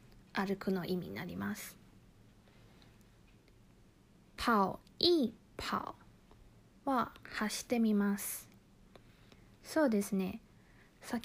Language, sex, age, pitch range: Chinese, female, 20-39, 205-265 Hz